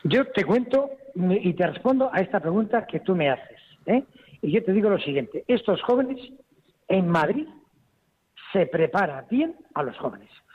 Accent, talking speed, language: Spanish, 170 wpm, Spanish